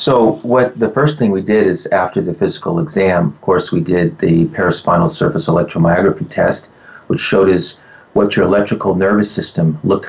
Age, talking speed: 40-59, 180 wpm